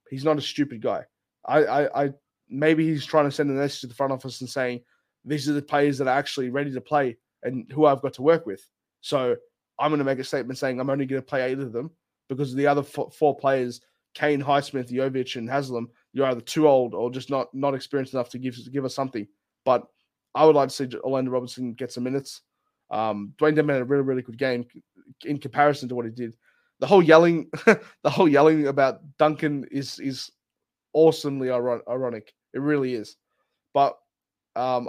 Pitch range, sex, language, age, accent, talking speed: 125-145 Hz, male, English, 20-39, Australian, 215 wpm